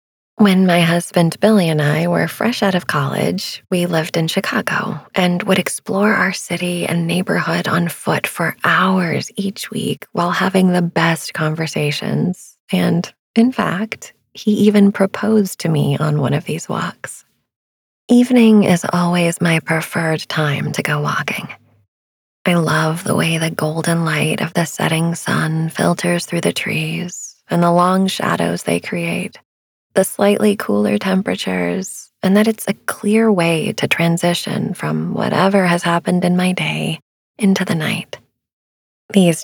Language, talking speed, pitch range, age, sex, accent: English, 150 wpm, 160-200 Hz, 20-39, female, American